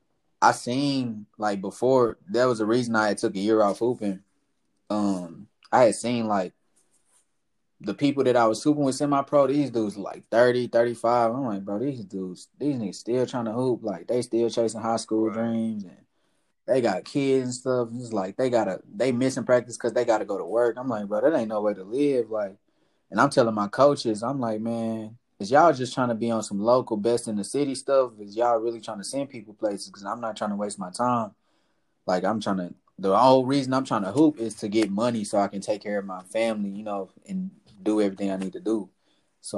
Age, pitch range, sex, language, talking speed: 20-39, 100-125 Hz, male, English, 225 wpm